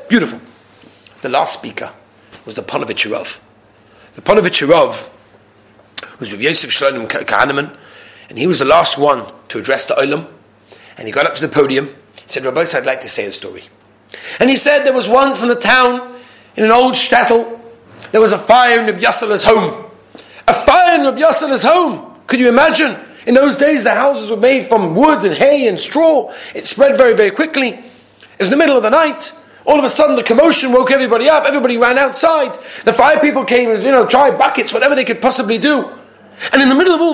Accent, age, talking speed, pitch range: British, 40-59, 200 wpm, 220-285 Hz